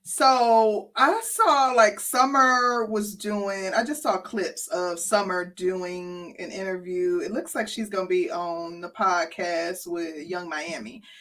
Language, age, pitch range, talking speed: English, 20-39, 190-230 Hz, 150 wpm